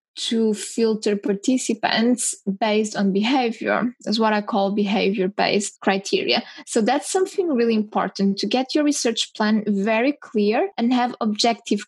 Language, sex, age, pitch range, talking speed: English, female, 10-29, 210-245 Hz, 135 wpm